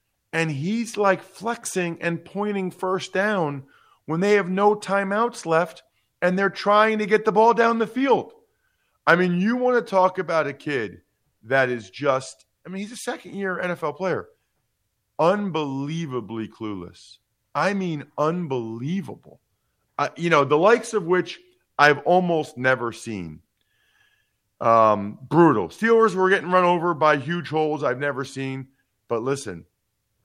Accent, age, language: American, 40-59, English